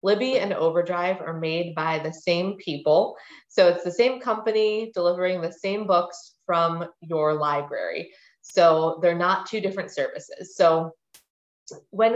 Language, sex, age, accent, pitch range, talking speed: English, female, 20-39, American, 160-195 Hz, 145 wpm